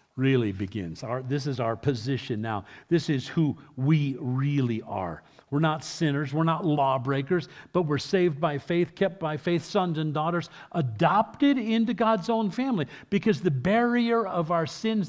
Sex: male